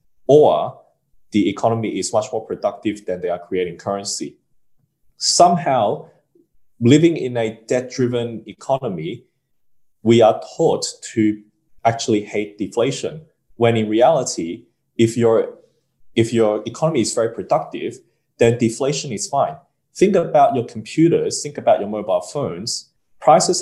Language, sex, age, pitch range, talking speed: English, male, 20-39, 110-145 Hz, 125 wpm